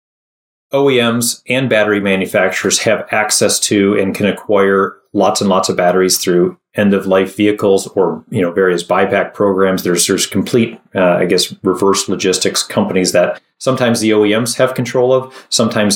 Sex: male